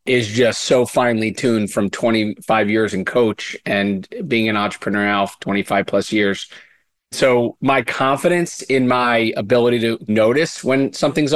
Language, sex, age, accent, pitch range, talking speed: English, male, 30-49, American, 120-145 Hz, 155 wpm